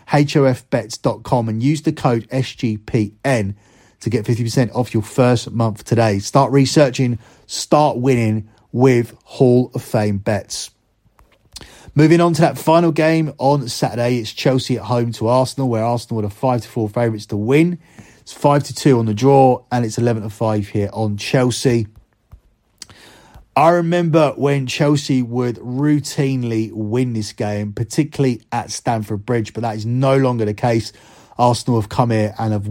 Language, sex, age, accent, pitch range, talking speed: English, male, 30-49, British, 115-145 Hz, 150 wpm